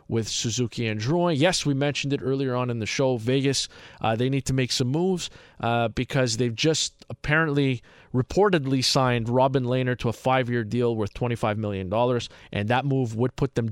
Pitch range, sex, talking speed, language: 115-140 Hz, male, 185 wpm, English